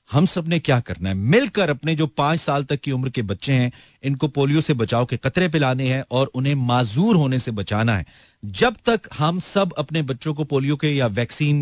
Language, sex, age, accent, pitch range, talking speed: Hindi, male, 40-59, native, 125-155 Hz, 215 wpm